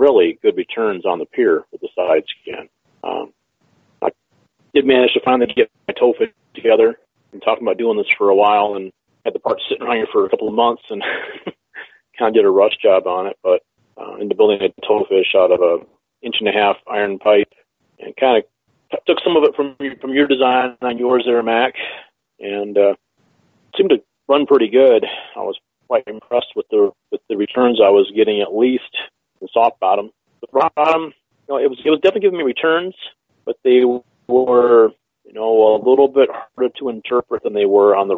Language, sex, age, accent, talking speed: English, male, 40-59, American, 210 wpm